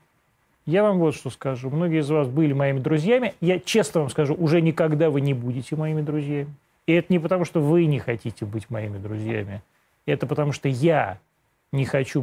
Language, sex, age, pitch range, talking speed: Russian, male, 30-49, 130-165 Hz, 190 wpm